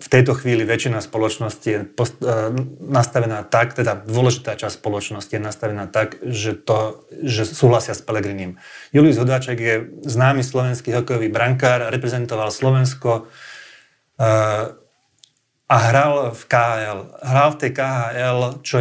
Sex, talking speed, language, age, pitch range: male, 120 wpm, Slovak, 30-49, 115-135 Hz